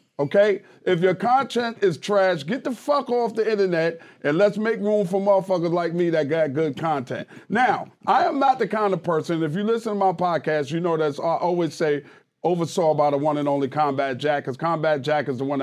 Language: English